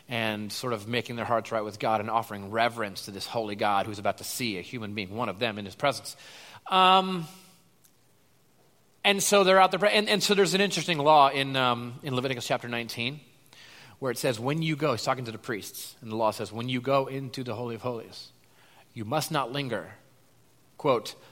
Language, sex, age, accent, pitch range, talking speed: English, male, 30-49, American, 125-195 Hz, 215 wpm